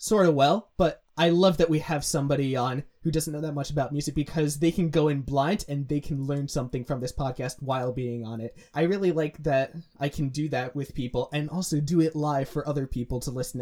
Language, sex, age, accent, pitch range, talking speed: English, male, 20-39, American, 135-165 Hz, 245 wpm